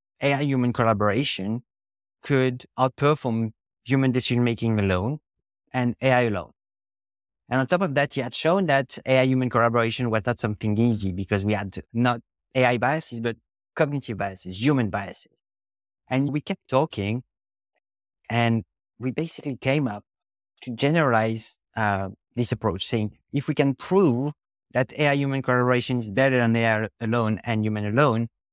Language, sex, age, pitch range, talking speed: English, male, 30-49, 105-130 Hz, 140 wpm